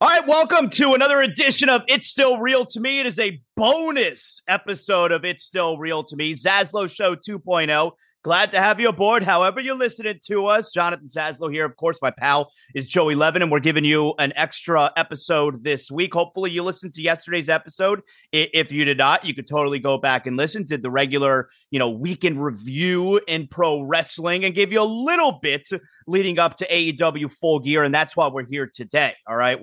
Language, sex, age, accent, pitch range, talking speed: English, male, 30-49, American, 145-195 Hz, 205 wpm